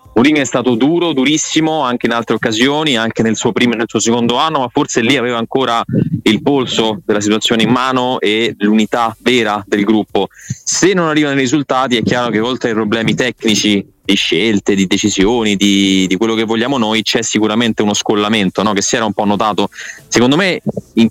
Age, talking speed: 20-39, 195 wpm